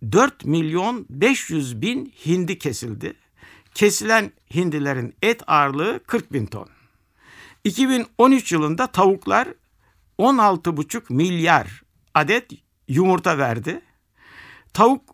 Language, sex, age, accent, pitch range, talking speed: Turkish, male, 60-79, native, 145-225 Hz, 85 wpm